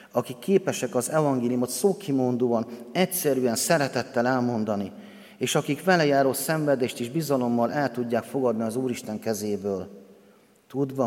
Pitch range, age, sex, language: 105-130 Hz, 30-49, male, Hungarian